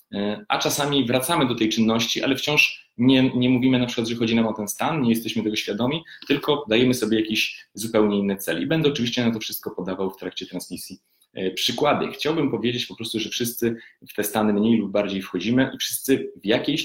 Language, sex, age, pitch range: Polish, male, 30-49, 100-120 Hz